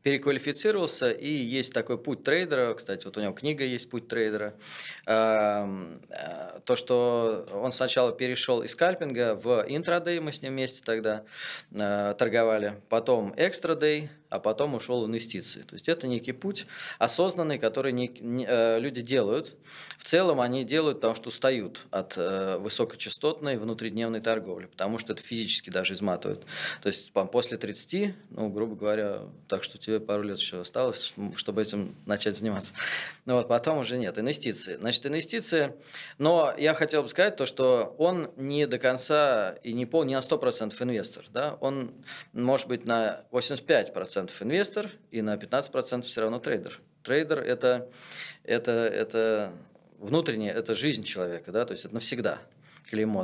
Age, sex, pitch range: 20-39, male, 110-145 Hz